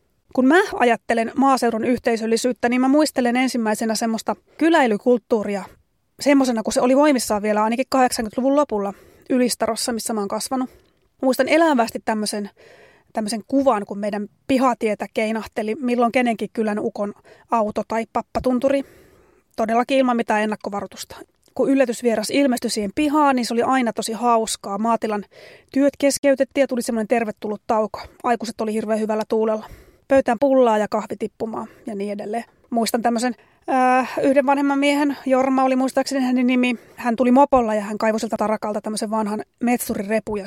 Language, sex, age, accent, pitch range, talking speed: Finnish, female, 20-39, native, 220-265 Hz, 145 wpm